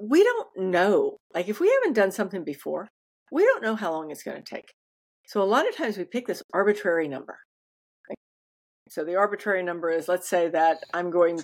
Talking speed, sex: 205 wpm, female